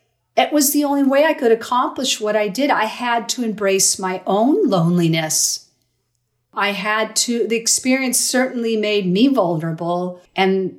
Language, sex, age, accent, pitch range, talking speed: English, female, 50-69, American, 170-220 Hz, 155 wpm